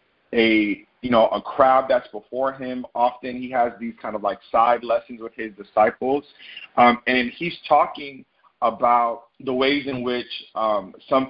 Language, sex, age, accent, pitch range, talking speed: English, male, 30-49, American, 110-125 Hz, 165 wpm